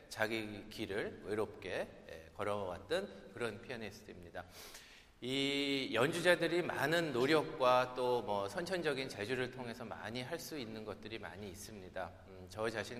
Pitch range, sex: 105-145 Hz, male